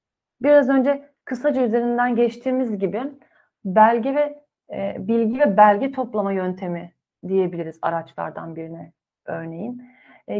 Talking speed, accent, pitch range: 110 wpm, native, 200-255 Hz